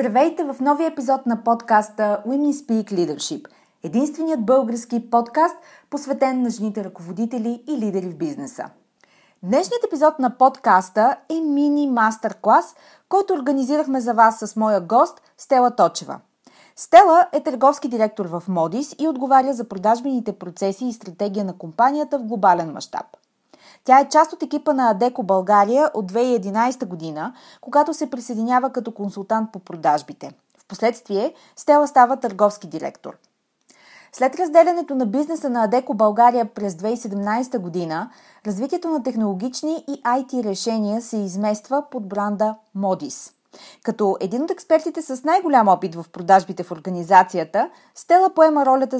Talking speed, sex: 140 wpm, female